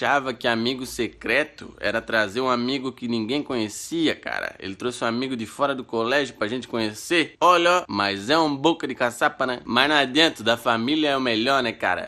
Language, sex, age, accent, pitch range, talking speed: Portuguese, male, 20-39, Brazilian, 115-150 Hz, 205 wpm